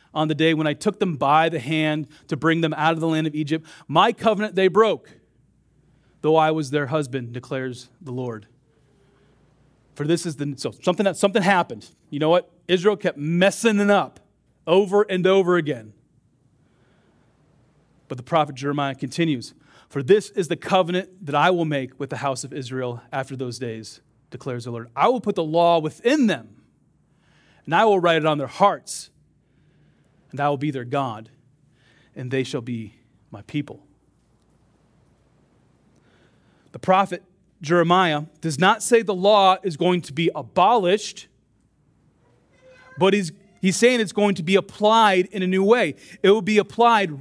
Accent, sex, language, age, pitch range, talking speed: American, male, English, 30-49, 140-190 Hz, 170 wpm